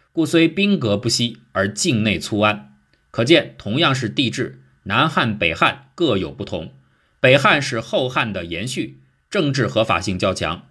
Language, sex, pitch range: Chinese, male, 100-160 Hz